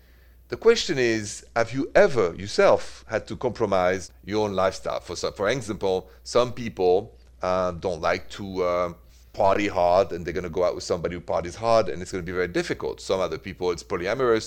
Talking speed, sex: 205 wpm, male